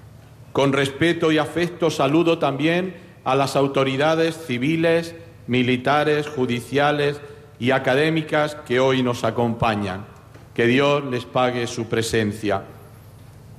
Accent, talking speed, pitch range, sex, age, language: Spanish, 105 wpm, 125-155 Hz, male, 50-69, Spanish